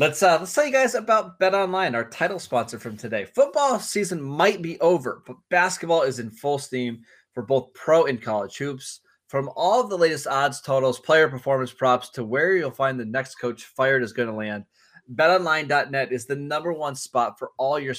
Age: 20-39